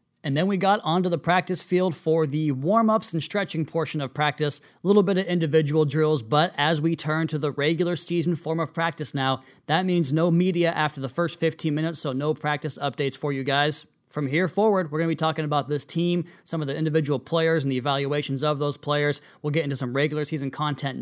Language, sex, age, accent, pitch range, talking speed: English, male, 20-39, American, 140-160 Hz, 225 wpm